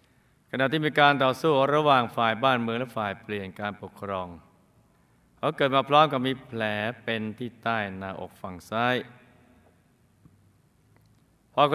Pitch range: 110-140 Hz